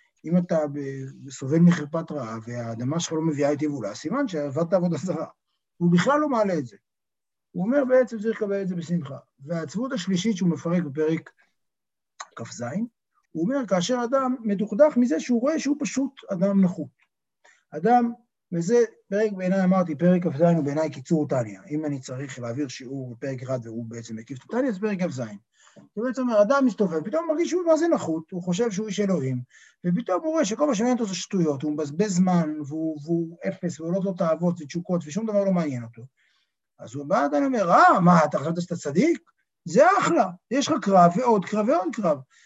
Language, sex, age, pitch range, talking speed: Hebrew, male, 50-69, 155-220 Hz, 185 wpm